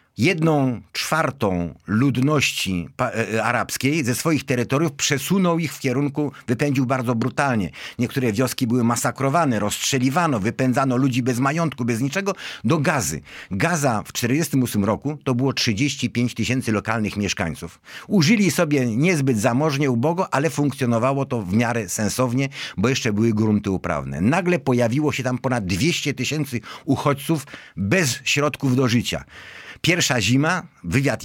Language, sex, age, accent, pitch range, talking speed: Polish, male, 50-69, native, 115-145 Hz, 130 wpm